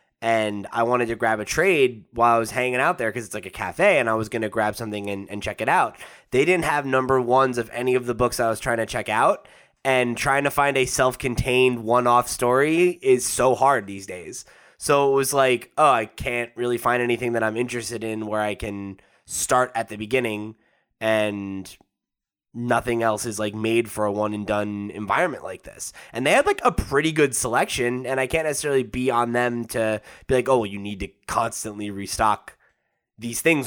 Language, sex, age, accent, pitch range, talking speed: English, male, 20-39, American, 105-125 Hz, 210 wpm